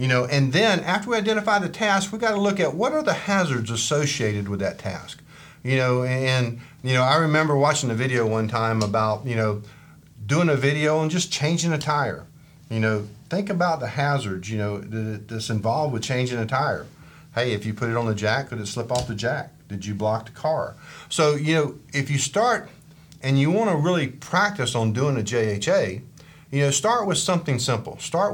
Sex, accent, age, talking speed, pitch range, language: male, American, 50-69, 215 wpm, 115-155 Hz, English